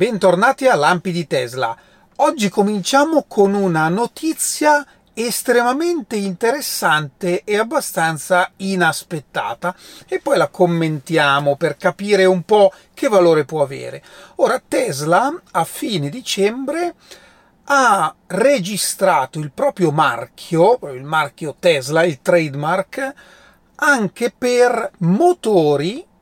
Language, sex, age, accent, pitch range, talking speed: Italian, male, 40-59, native, 160-210 Hz, 105 wpm